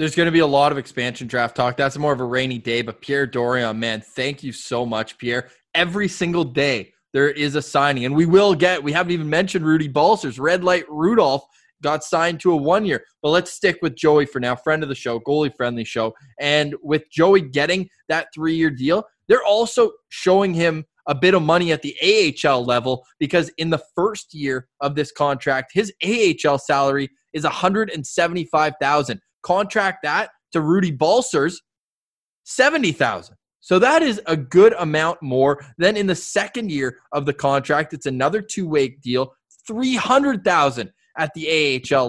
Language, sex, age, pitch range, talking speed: English, male, 20-39, 135-175 Hz, 175 wpm